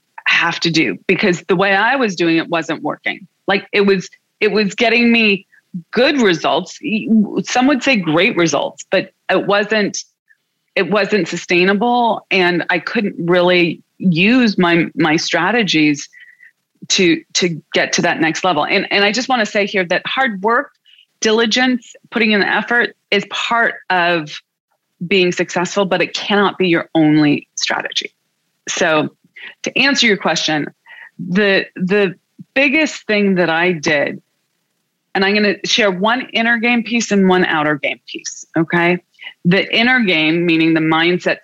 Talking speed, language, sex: 155 wpm, English, female